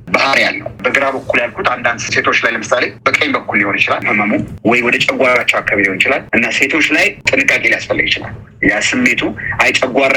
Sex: male